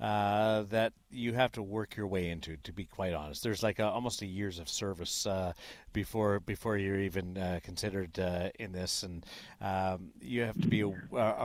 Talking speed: 200 wpm